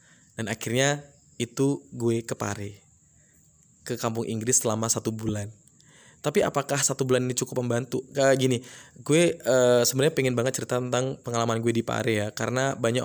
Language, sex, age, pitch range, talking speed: Indonesian, male, 20-39, 115-125 Hz, 155 wpm